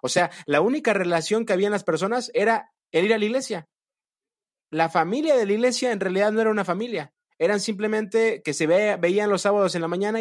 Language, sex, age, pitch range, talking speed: Spanish, male, 30-49, 150-195 Hz, 215 wpm